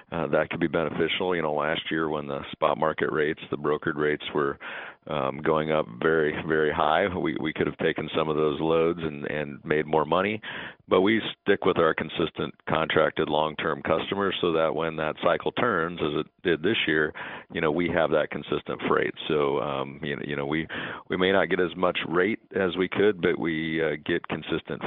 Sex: male